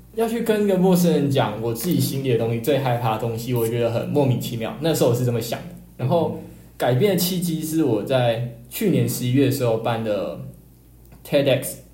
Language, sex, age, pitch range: Chinese, male, 20-39, 115-140 Hz